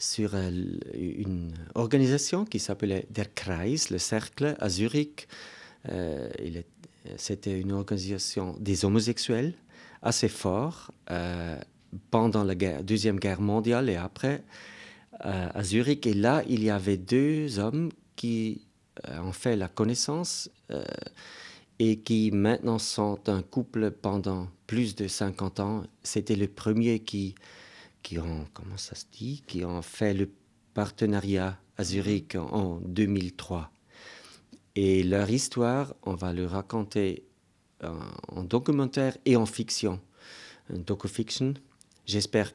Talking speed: 130 wpm